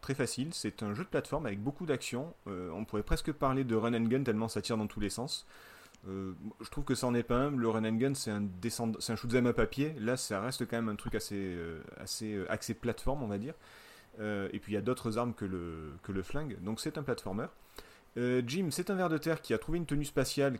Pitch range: 105-135 Hz